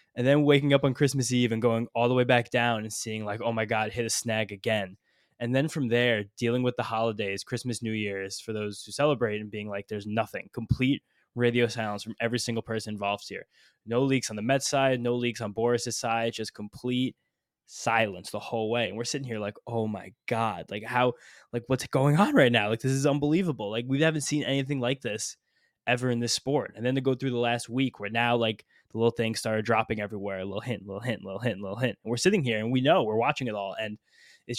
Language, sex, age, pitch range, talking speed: English, male, 10-29, 110-130 Hz, 245 wpm